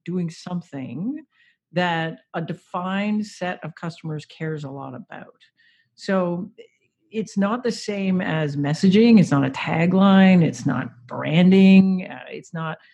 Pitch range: 155-205 Hz